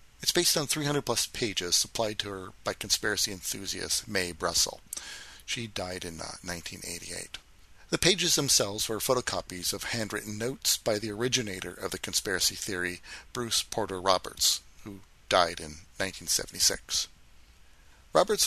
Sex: male